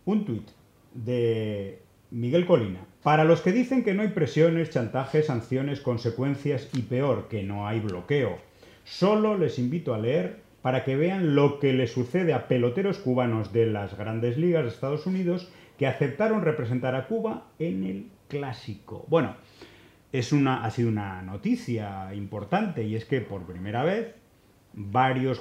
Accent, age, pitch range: Spanish, 40-59, 110-150 Hz